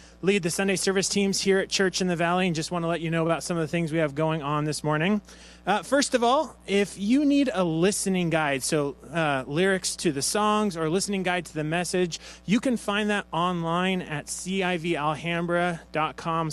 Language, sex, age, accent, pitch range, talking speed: English, male, 30-49, American, 155-205 Hz, 215 wpm